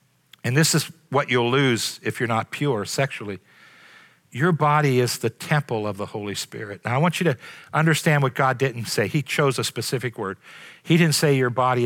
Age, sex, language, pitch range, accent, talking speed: 50-69, male, English, 130-175 Hz, American, 200 wpm